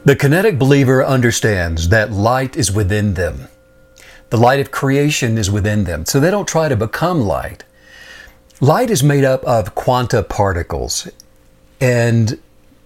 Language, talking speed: English, 145 wpm